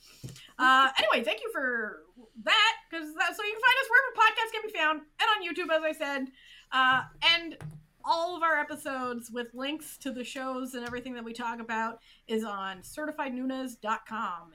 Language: English